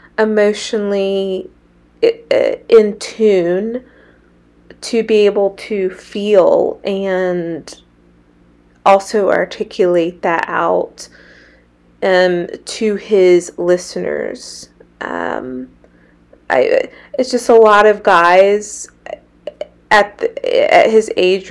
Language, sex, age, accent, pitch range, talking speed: English, female, 20-39, American, 175-210 Hz, 85 wpm